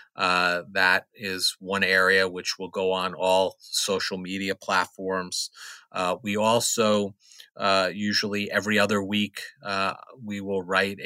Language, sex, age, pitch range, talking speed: English, male, 40-59, 95-110 Hz, 135 wpm